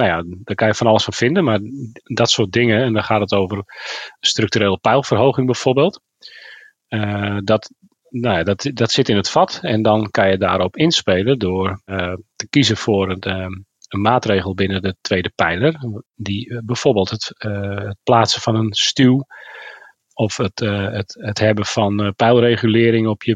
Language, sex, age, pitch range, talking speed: Dutch, male, 40-59, 100-115 Hz, 160 wpm